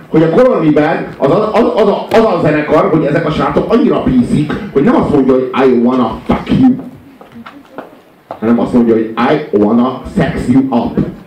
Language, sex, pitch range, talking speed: Hungarian, male, 160-220 Hz, 180 wpm